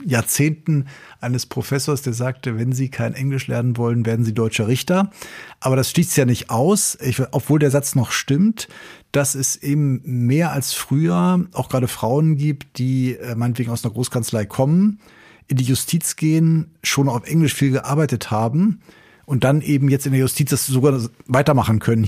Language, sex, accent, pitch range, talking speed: German, male, German, 115-145 Hz, 175 wpm